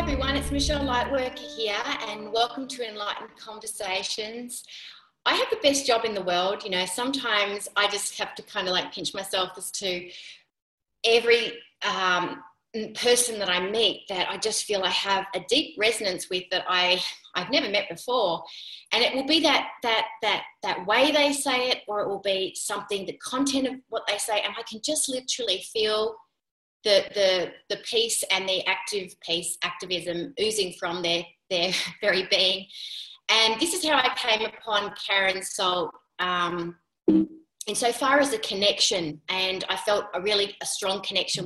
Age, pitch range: 30-49, 185-245 Hz